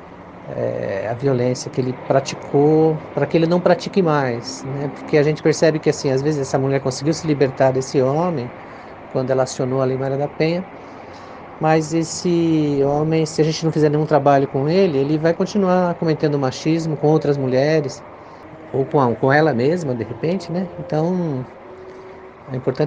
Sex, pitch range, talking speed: male, 125-155 Hz, 170 wpm